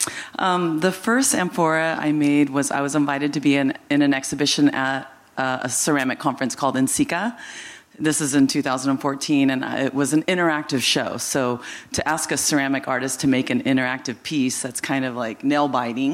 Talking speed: 180 wpm